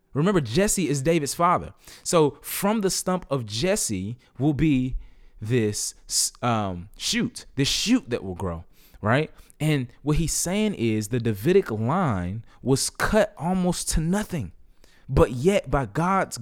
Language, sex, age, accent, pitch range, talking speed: English, male, 20-39, American, 110-160 Hz, 145 wpm